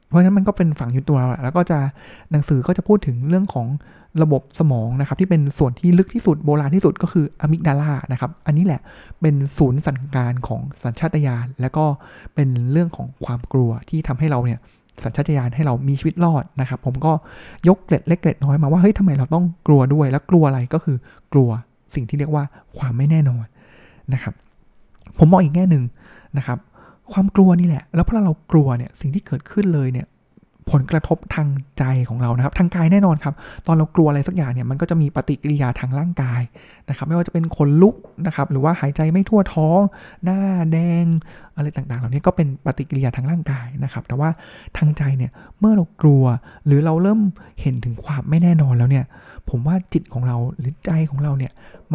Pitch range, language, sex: 130-165 Hz, Thai, male